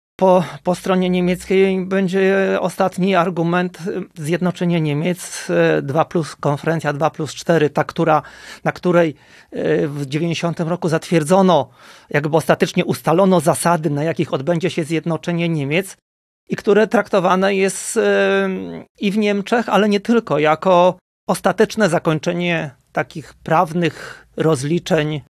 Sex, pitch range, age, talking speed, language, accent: male, 150-185 Hz, 30-49, 115 wpm, Polish, native